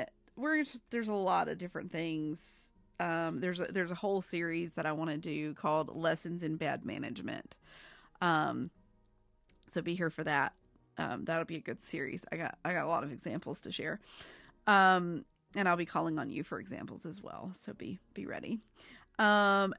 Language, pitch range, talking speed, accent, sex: English, 165-195 Hz, 190 wpm, American, female